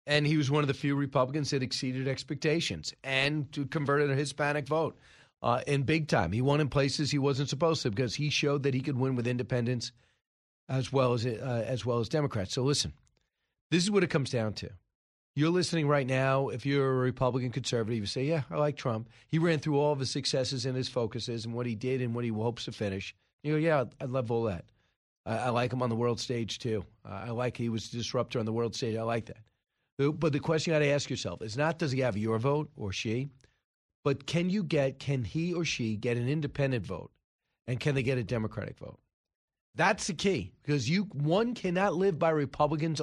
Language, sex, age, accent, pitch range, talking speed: English, male, 40-59, American, 120-155 Hz, 230 wpm